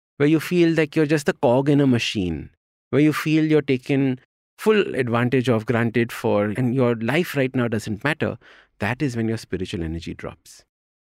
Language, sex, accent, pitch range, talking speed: English, male, Indian, 100-140 Hz, 190 wpm